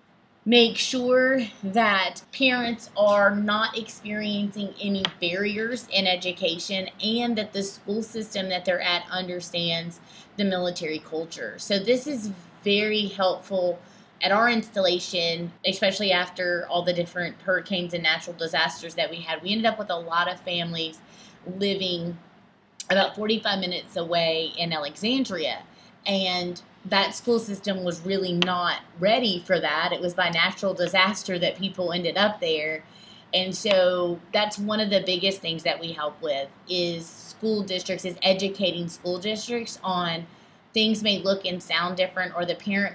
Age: 20-39